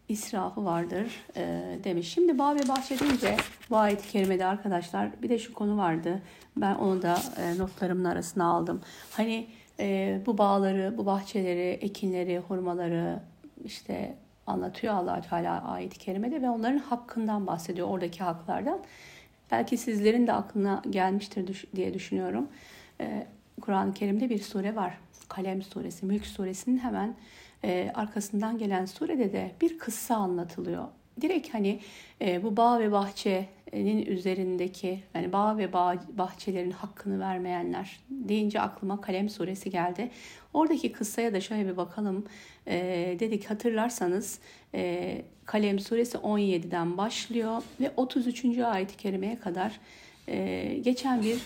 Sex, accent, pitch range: female, native, 185-225 Hz